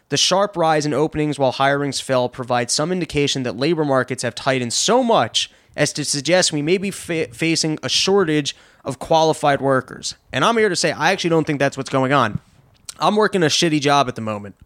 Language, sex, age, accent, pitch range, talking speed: English, male, 20-39, American, 125-160 Hz, 210 wpm